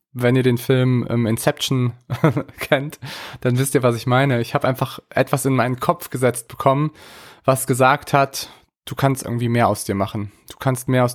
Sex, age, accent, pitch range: male, 20-39, German, 115-140 Hz